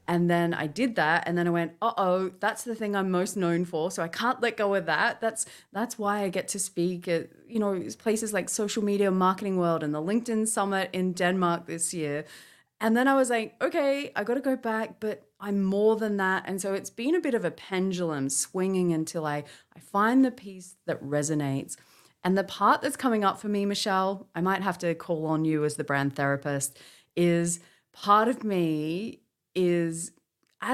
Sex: female